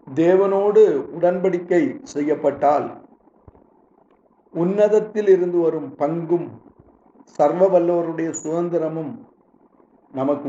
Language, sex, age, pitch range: Tamil, male, 50-69, 150-195 Hz